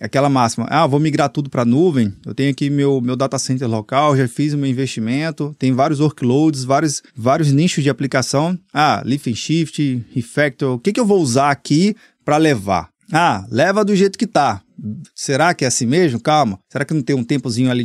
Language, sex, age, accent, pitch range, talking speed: Portuguese, male, 20-39, Brazilian, 130-175 Hz, 210 wpm